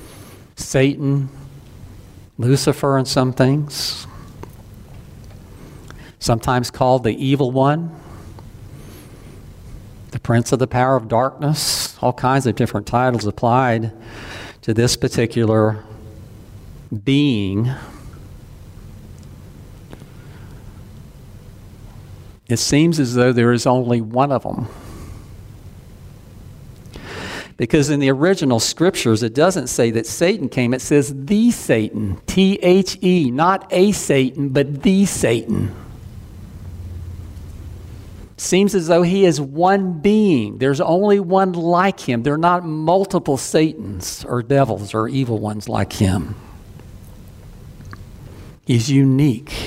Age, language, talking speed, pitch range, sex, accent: 50-69, English, 105 wpm, 105-140 Hz, male, American